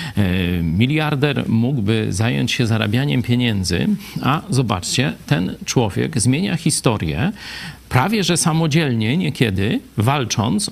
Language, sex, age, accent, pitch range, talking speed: Polish, male, 40-59, native, 110-140 Hz, 95 wpm